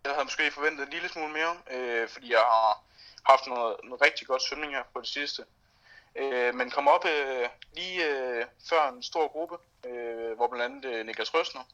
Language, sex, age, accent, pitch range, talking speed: Danish, male, 30-49, native, 120-155 Hz, 200 wpm